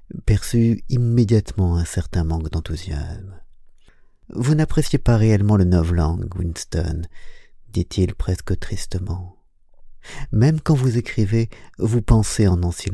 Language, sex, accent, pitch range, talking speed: French, male, French, 90-110 Hz, 120 wpm